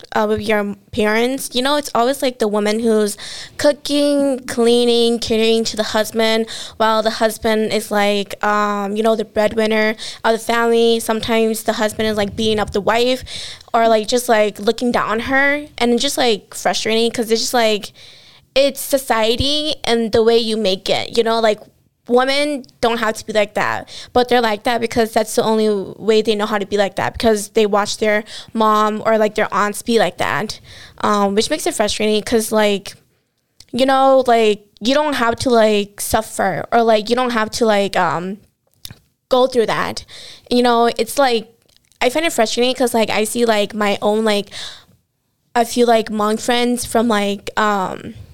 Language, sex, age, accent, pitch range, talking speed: English, female, 20-39, American, 210-240 Hz, 190 wpm